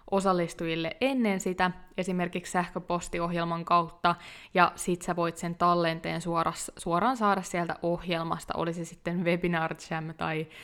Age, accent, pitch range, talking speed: 20-39, native, 170-200 Hz, 120 wpm